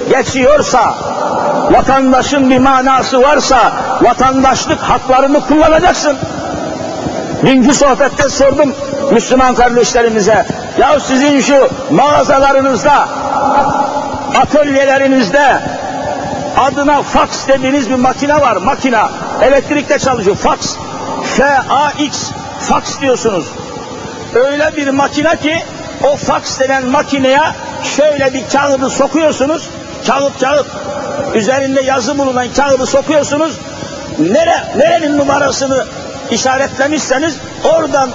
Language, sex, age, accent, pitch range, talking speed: Turkish, male, 50-69, native, 265-295 Hz, 85 wpm